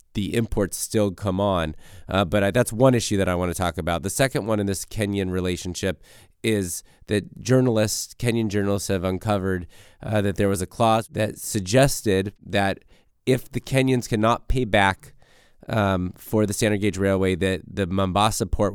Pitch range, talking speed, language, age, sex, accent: 95-115 Hz, 175 wpm, English, 30-49, male, American